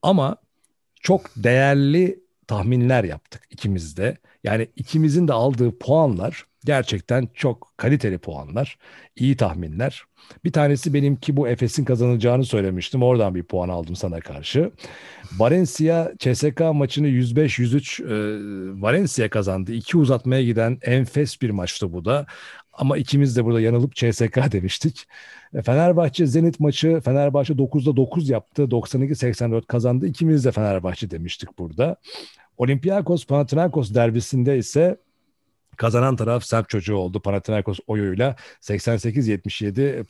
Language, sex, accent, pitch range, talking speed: Turkish, male, native, 110-145 Hz, 115 wpm